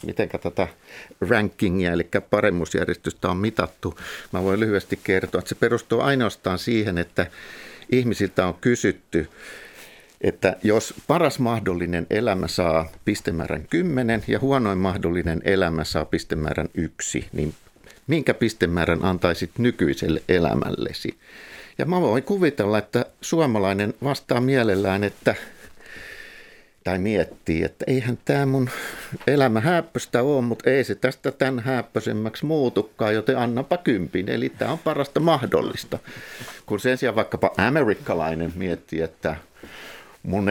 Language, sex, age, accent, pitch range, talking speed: Finnish, male, 50-69, native, 95-130 Hz, 120 wpm